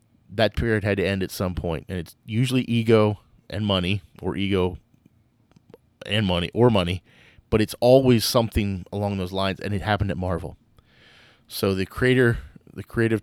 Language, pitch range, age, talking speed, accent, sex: English, 95-115 Hz, 30-49, 170 wpm, American, male